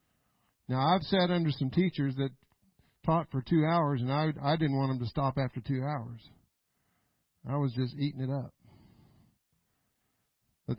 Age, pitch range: 50-69, 130-160 Hz